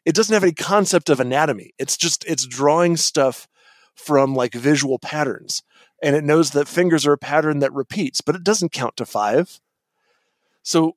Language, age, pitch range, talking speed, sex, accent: English, 30-49, 135-190 Hz, 180 wpm, male, American